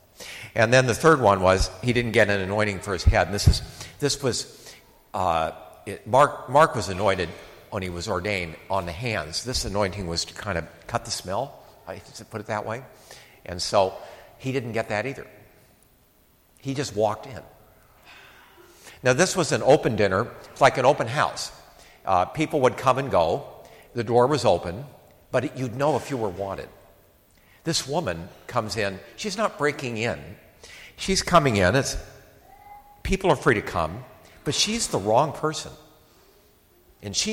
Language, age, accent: English, 50-69, American